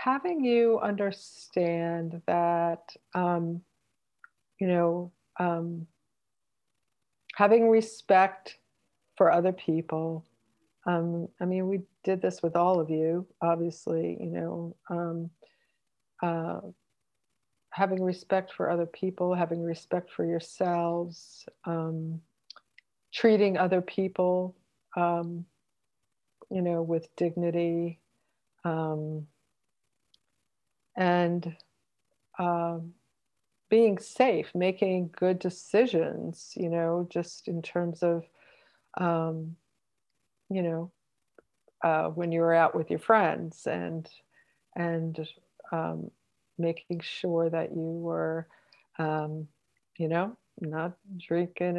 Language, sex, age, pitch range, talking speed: English, female, 50-69, 160-180 Hz, 95 wpm